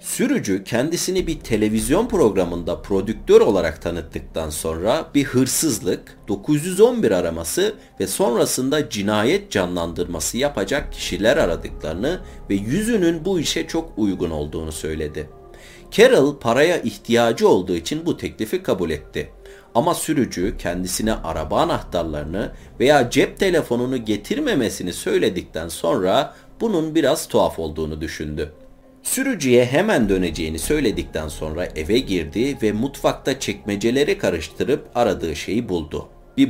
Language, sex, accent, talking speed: Turkish, male, native, 110 wpm